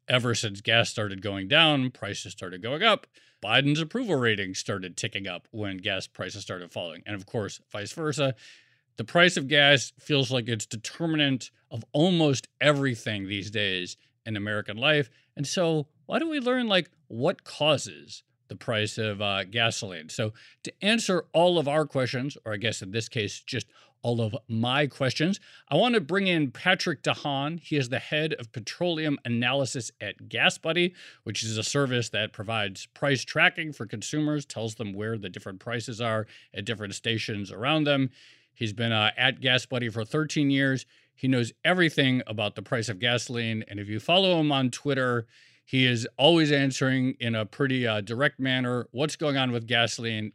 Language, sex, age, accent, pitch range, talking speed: English, male, 40-59, American, 110-145 Hz, 180 wpm